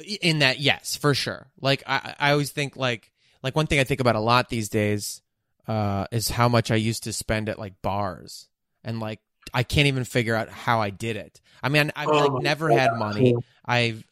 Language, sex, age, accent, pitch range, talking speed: English, male, 20-39, American, 115-145 Hz, 220 wpm